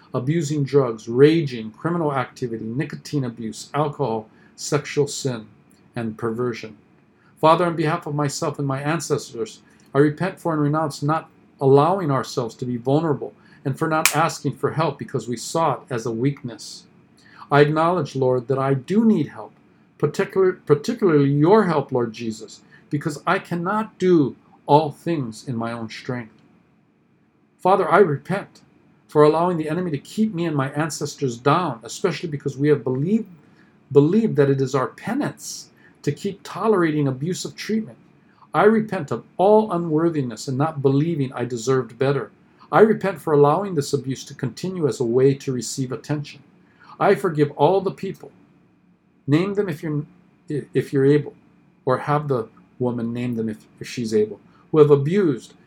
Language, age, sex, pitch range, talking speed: English, 50-69, male, 130-170 Hz, 160 wpm